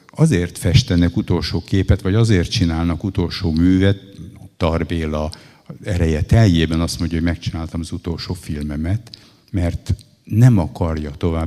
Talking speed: 115 wpm